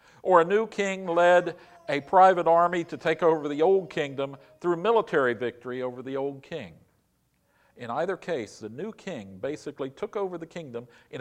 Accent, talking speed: American, 175 wpm